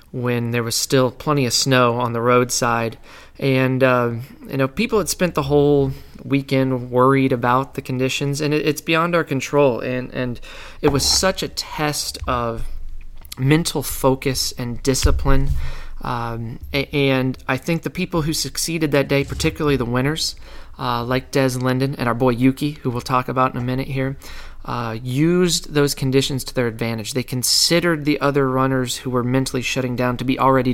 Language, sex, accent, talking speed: English, male, American, 180 wpm